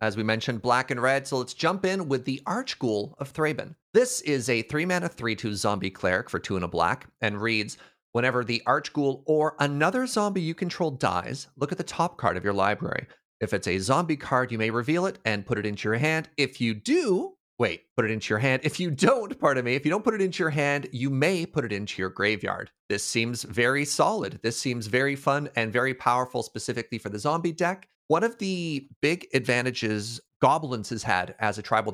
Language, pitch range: English, 115-155 Hz